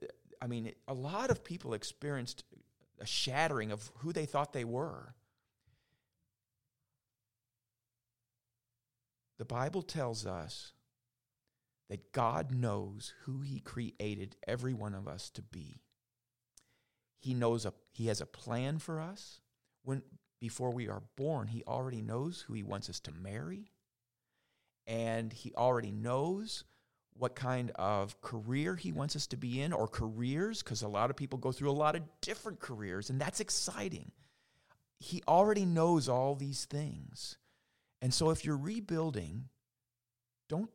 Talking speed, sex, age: 145 wpm, male, 40-59